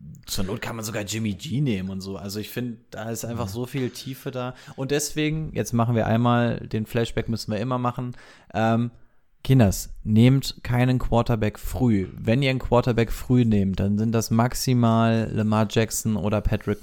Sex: male